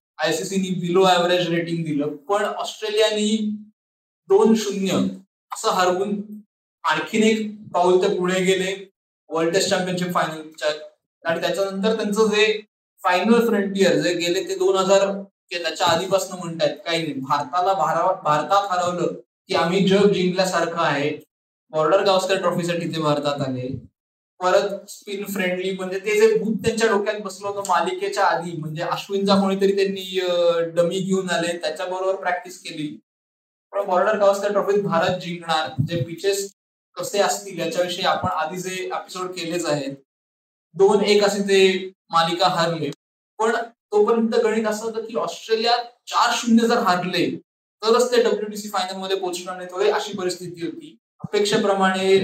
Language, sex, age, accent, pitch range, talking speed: Marathi, male, 20-39, native, 170-200 Hz, 85 wpm